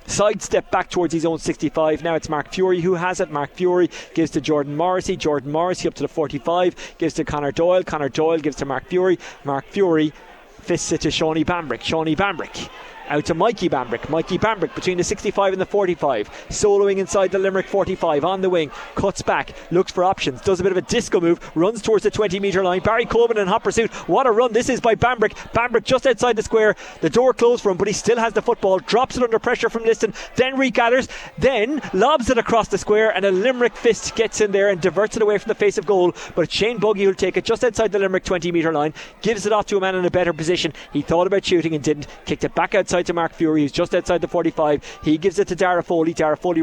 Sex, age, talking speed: male, 30-49, 240 wpm